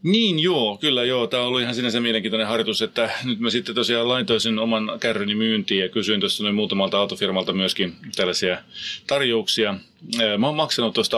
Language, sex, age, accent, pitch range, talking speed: Finnish, male, 30-49, native, 110-150 Hz, 175 wpm